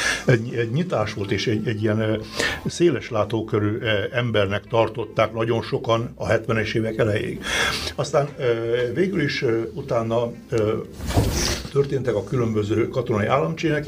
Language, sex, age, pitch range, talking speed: Hungarian, male, 60-79, 105-125 Hz, 115 wpm